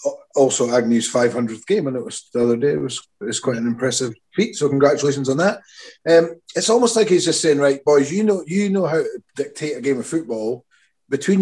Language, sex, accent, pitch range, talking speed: English, male, British, 120-155 Hz, 225 wpm